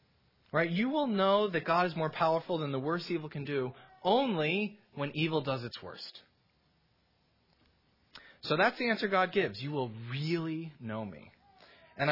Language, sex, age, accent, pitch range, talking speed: English, male, 30-49, American, 140-195 Hz, 165 wpm